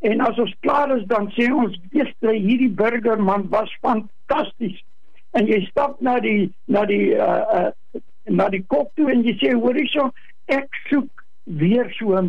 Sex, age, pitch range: male, 60-79, 215-275 Hz